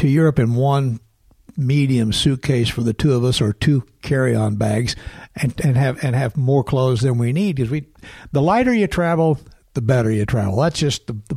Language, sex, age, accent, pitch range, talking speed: English, male, 60-79, American, 125-160 Hz, 205 wpm